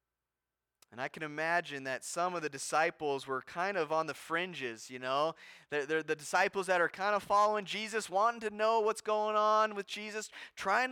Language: English